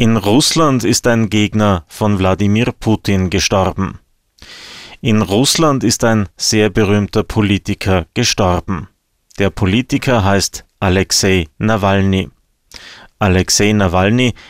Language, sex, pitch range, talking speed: German, male, 95-115 Hz, 100 wpm